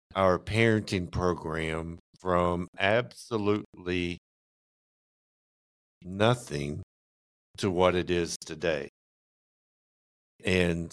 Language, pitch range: English, 85-105 Hz